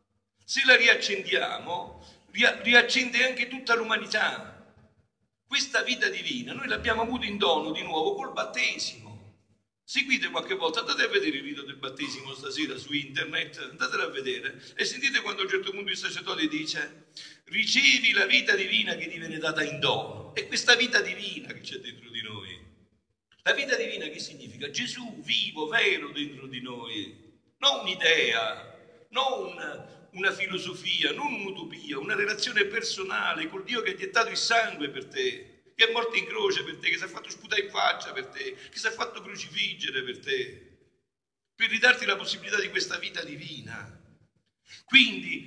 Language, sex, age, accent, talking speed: Italian, male, 50-69, native, 170 wpm